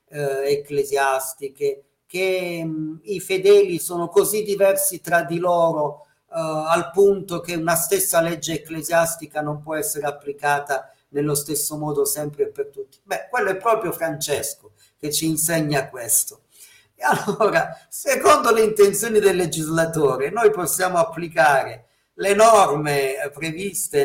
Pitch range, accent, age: 150-200 Hz, native, 50-69